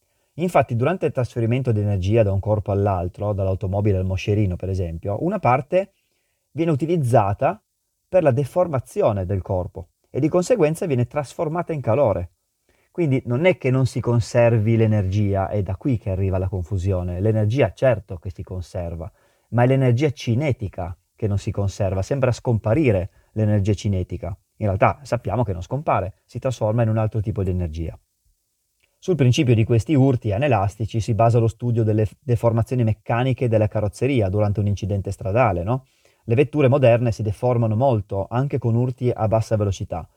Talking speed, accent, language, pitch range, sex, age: 165 wpm, native, Italian, 100-125 Hz, male, 30-49